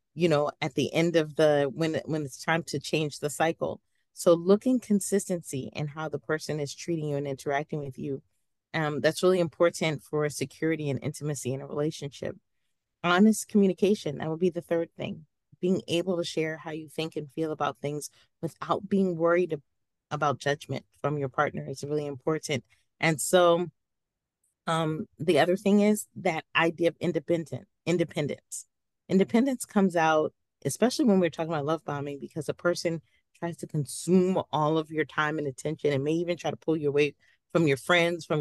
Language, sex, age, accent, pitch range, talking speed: English, female, 30-49, American, 145-180 Hz, 180 wpm